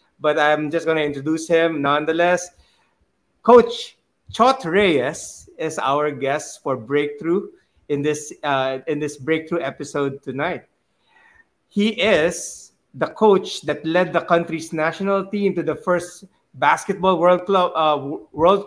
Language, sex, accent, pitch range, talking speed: English, male, Filipino, 150-180 Hz, 135 wpm